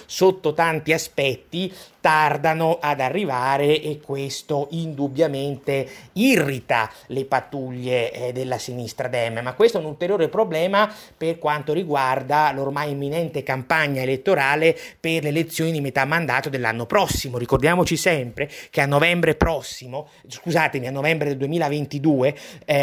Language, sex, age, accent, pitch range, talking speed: Italian, male, 30-49, native, 140-170 Hz, 120 wpm